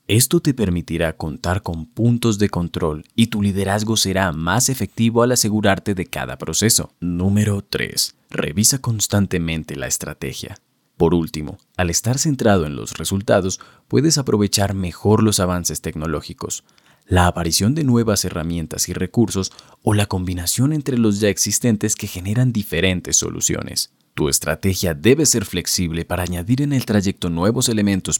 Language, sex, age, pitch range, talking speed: Spanish, male, 30-49, 85-110 Hz, 145 wpm